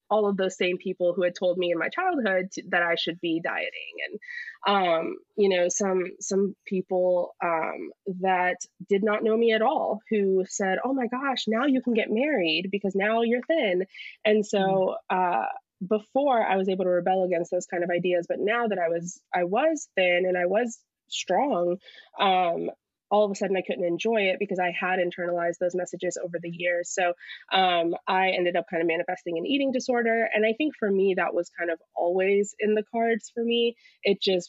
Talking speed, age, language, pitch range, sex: 205 wpm, 20-39, English, 170-205 Hz, female